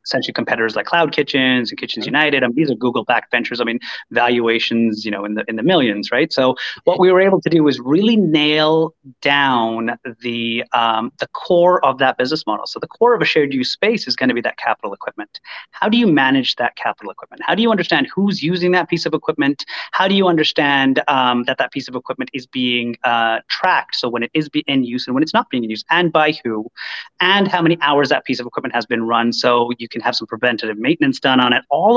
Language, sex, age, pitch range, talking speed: English, male, 30-49, 120-160 Hz, 240 wpm